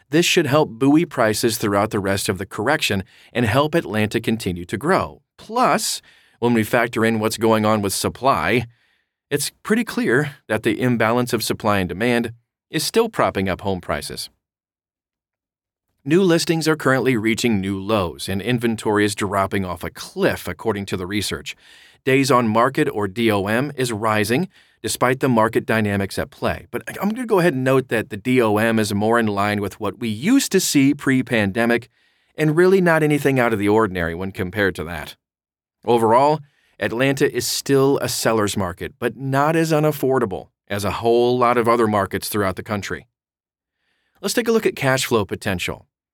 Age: 40-59